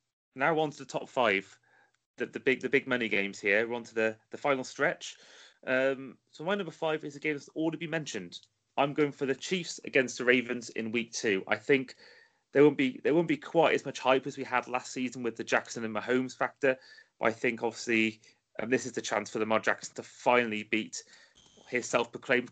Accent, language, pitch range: British, English, 110-130 Hz